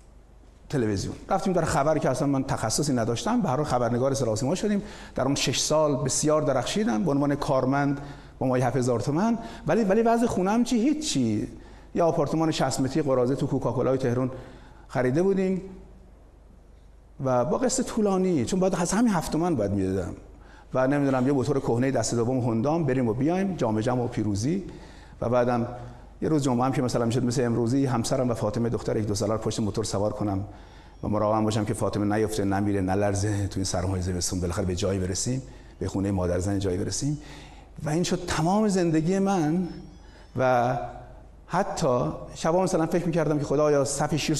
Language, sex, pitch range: Persian, male, 105-155 Hz